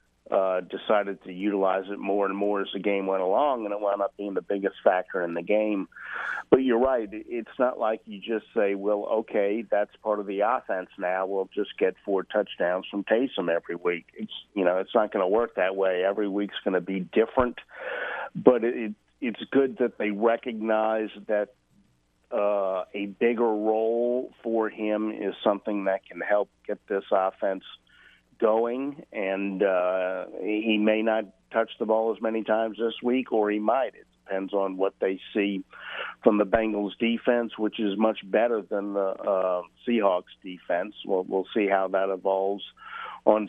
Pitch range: 95-110 Hz